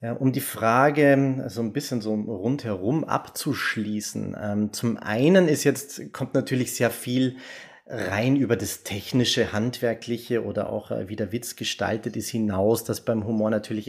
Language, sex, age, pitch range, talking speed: German, male, 30-49, 110-130 Hz, 150 wpm